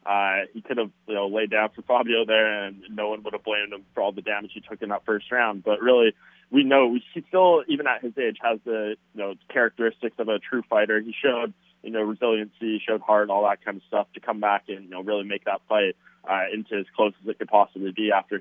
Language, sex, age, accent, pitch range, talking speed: English, male, 20-39, American, 100-115 Hz, 260 wpm